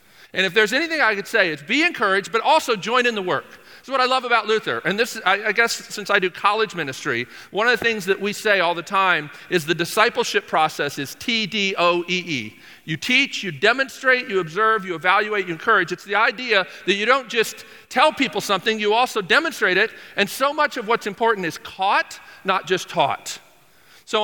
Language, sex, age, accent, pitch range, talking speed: English, male, 40-59, American, 160-220 Hz, 210 wpm